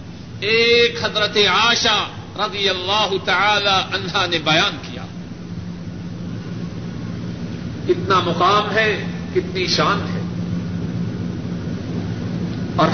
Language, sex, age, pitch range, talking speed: Urdu, male, 50-69, 175-215 Hz, 80 wpm